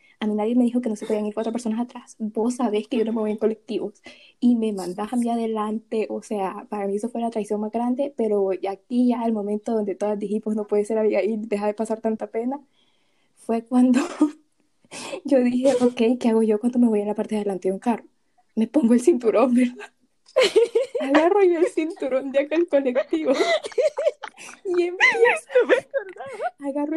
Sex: female